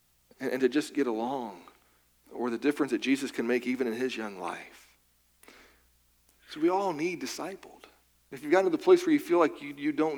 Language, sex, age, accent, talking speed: English, male, 40-59, American, 205 wpm